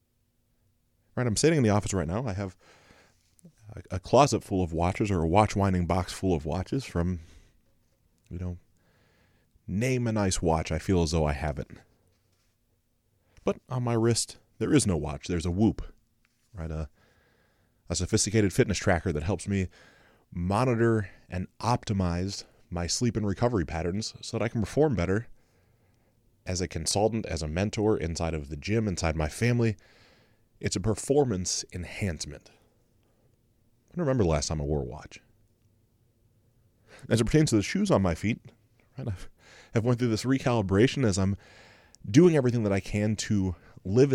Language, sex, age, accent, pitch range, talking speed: English, male, 30-49, American, 90-115 Hz, 165 wpm